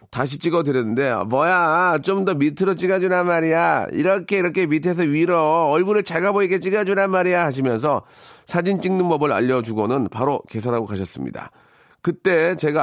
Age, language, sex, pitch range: 40-59, Korean, male, 120-170 Hz